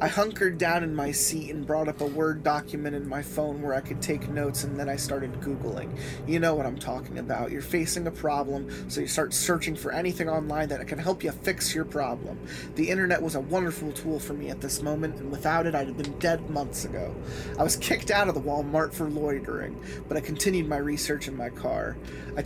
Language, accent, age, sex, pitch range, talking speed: English, American, 20-39, male, 140-160 Hz, 230 wpm